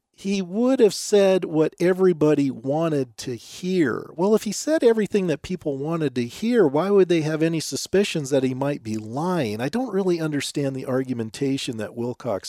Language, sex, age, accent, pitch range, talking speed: English, male, 40-59, American, 140-200 Hz, 185 wpm